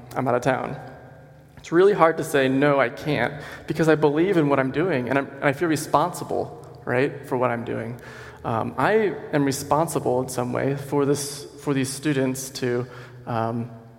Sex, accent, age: male, American, 20-39